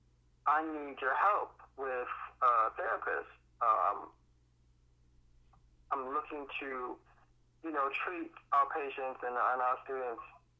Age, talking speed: 20-39, 115 wpm